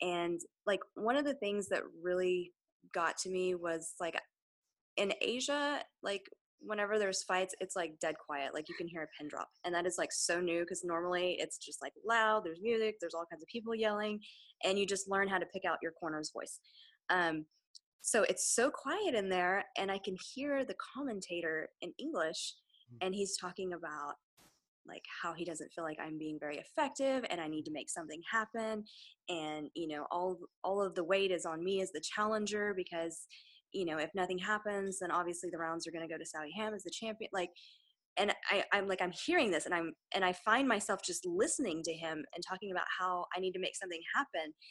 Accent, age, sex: American, 20-39, female